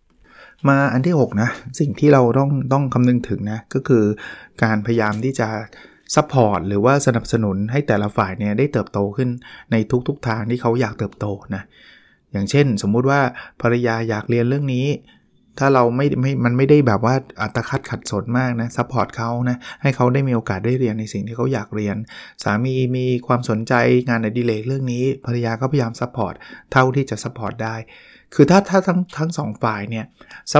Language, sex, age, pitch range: Thai, male, 20-39, 110-135 Hz